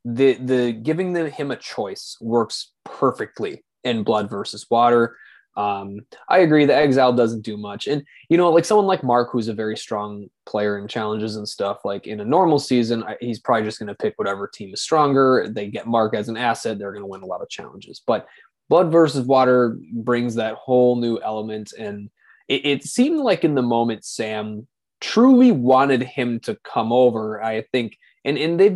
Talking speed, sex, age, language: 200 wpm, male, 20-39, English